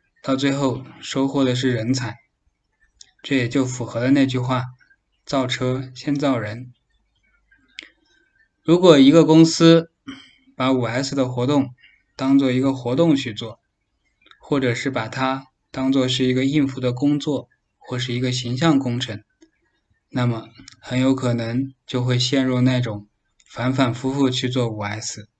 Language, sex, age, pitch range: Chinese, male, 20-39, 125-145 Hz